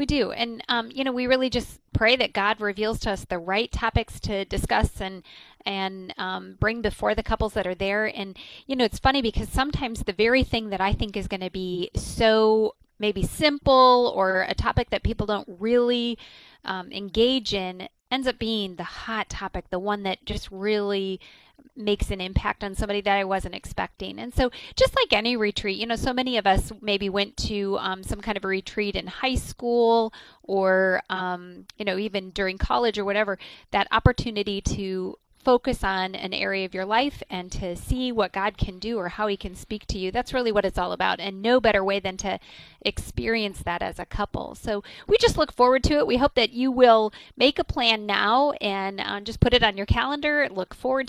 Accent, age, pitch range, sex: American, 20-39, 195-245 Hz, female